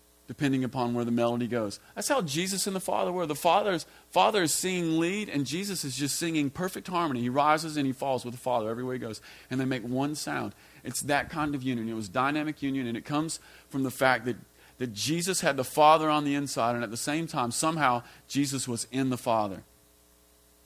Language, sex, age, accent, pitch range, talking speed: English, male, 40-59, American, 105-145 Hz, 220 wpm